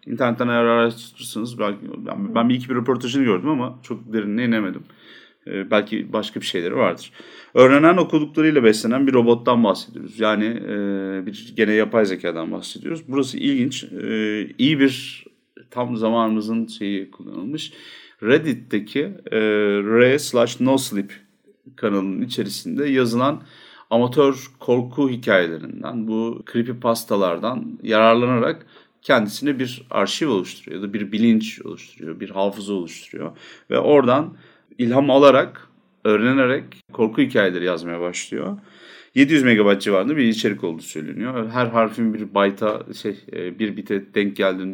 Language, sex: Turkish, male